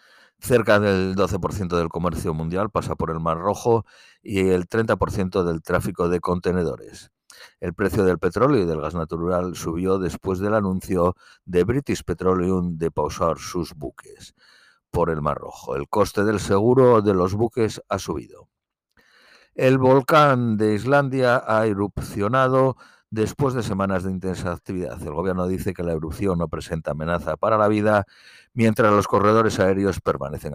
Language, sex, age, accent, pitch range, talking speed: Spanish, male, 50-69, Spanish, 90-115 Hz, 155 wpm